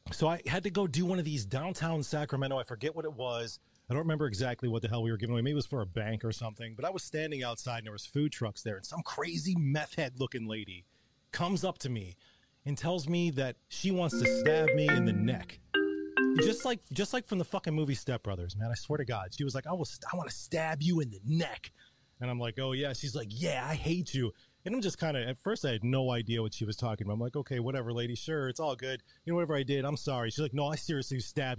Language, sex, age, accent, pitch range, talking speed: English, male, 30-49, American, 120-160 Hz, 270 wpm